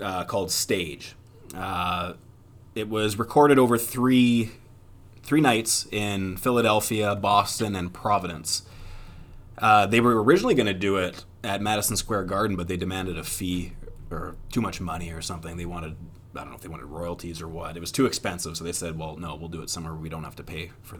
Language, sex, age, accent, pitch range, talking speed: English, male, 20-39, American, 90-110 Hz, 200 wpm